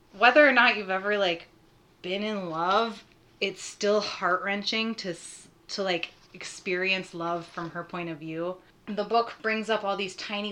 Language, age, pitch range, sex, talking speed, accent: English, 20-39, 175-220 Hz, female, 165 wpm, American